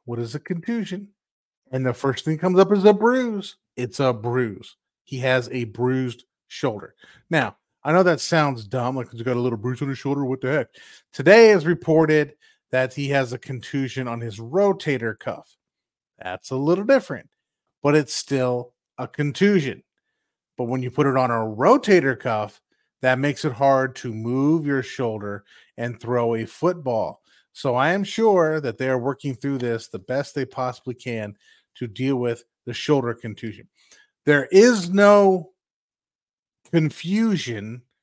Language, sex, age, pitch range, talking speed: English, male, 30-49, 125-175 Hz, 165 wpm